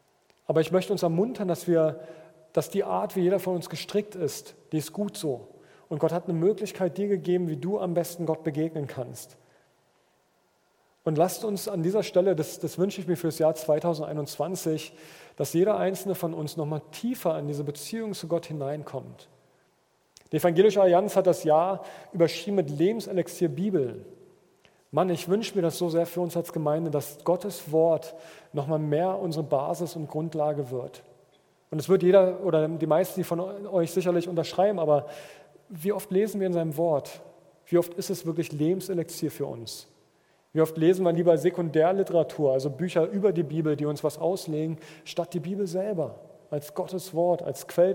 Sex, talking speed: male, 180 wpm